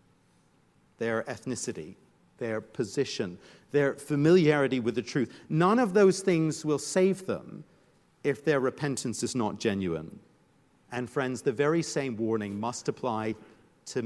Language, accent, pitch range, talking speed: English, British, 135-180 Hz, 130 wpm